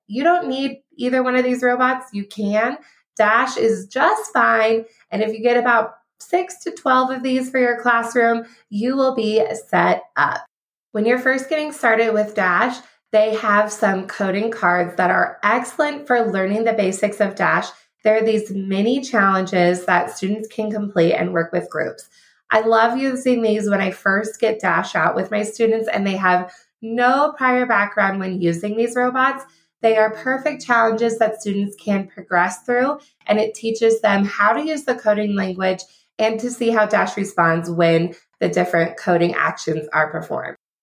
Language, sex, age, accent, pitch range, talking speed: English, female, 20-39, American, 200-250 Hz, 180 wpm